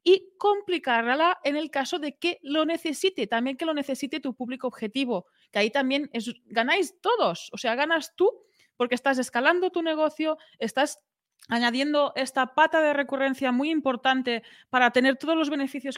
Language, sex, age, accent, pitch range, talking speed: Spanish, female, 30-49, Spanish, 245-305 Hz, 160 wpm